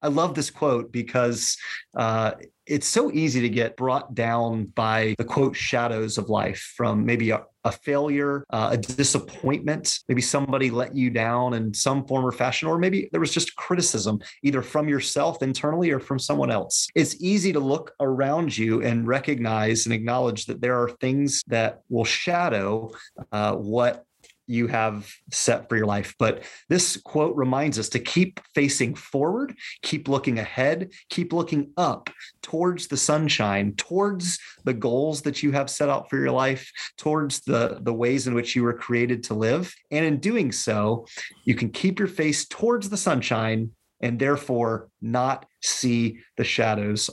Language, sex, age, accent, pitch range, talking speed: English, male, 30-49, American, 115-145 Hz, 170 wpm